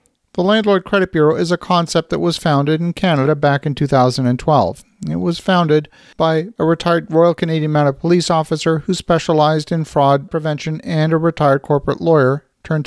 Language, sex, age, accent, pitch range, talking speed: English, male, 50-69, American, 145-170 Hz, 175 wpm